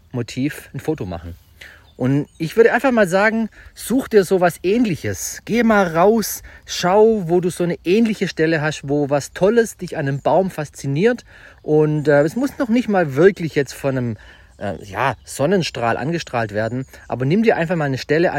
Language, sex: German, male